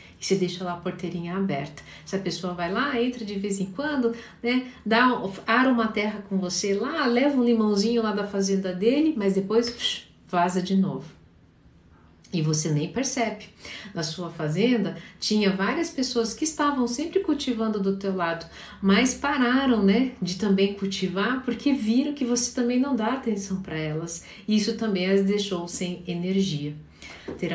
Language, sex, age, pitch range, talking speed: Portuguese, female, 50-69, 175-235 Hz, 165 wpm